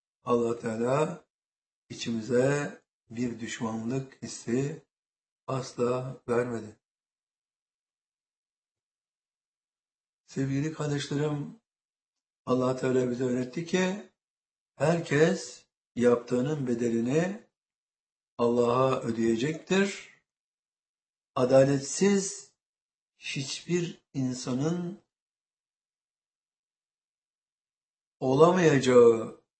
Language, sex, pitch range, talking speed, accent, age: Turkish, male, 120-150 Hz, 50 wpm, native, 60-79